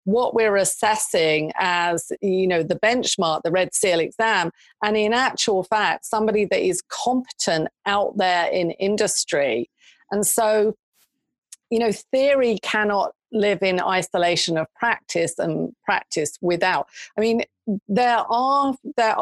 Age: 40-59